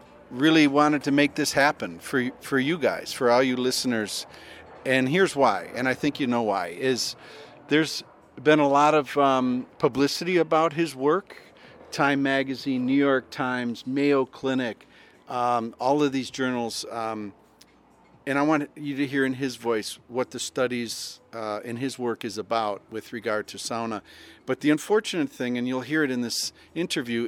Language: English